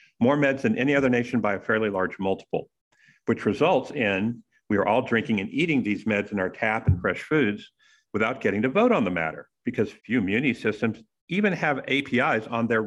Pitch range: 105-145 Hz